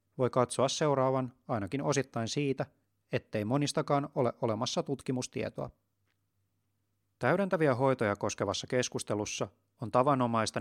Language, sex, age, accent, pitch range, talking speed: Finnish, male, 30-49, native, 110-135 Hz, 95 wpm